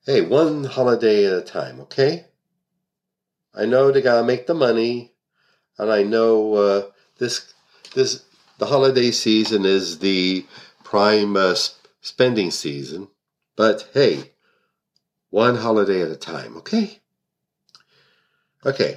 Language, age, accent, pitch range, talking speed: English, 50-69, American, 95-135 Hz, 125 wpm